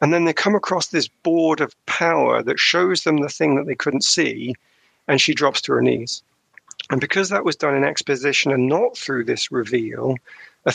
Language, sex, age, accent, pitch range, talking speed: English, male, 40-59, British, 130-185 Hz, 205 wpm